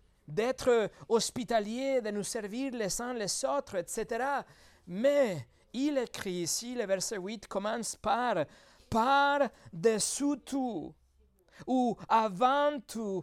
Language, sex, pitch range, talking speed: French, male, 185-255 Hz, 115 wpm